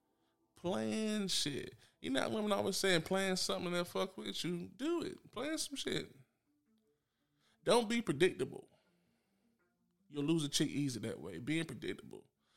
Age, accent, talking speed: 20-39, American, 150 wpm